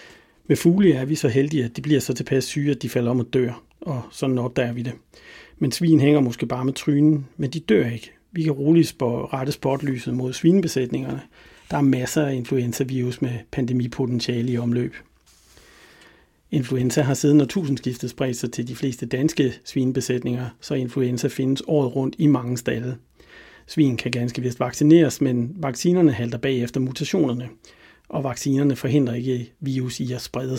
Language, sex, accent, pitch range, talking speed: Danish, male, native, 125-150 Hz, 170 wpm